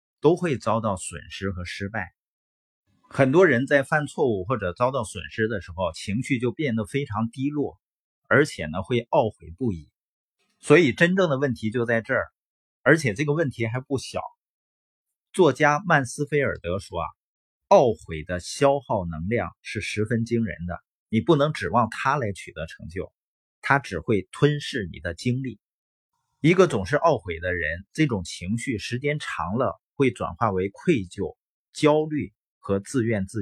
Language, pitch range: Chinese, 95-140 Hz